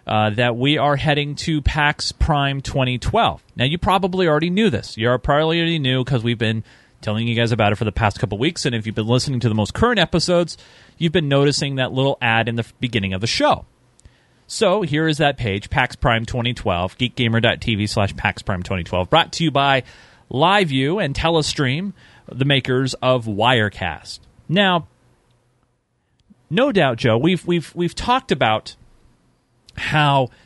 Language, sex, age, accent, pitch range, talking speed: English, male, 30-49, American, 120-160 Hz, 175 wpm